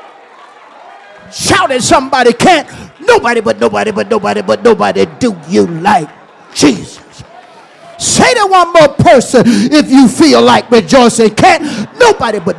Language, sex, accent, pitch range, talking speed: English, male, American, 250-360 Hz, 130 wpm